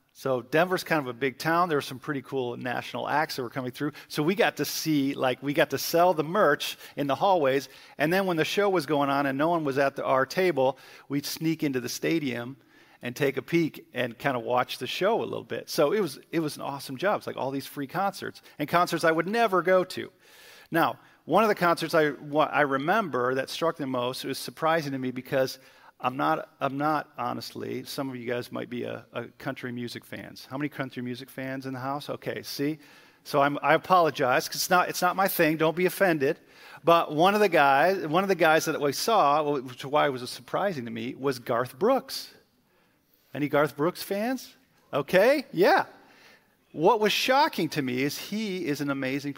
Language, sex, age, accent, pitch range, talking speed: English, male, 40-59, American, 130-165 Hz, 225 wpm